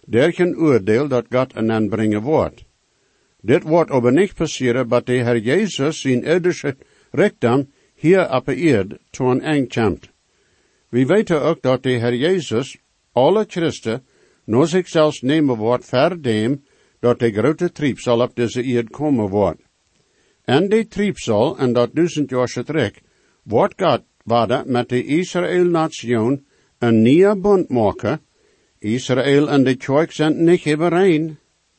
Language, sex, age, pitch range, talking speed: English, male, 60-79, 120-155 Hz, 145 wpm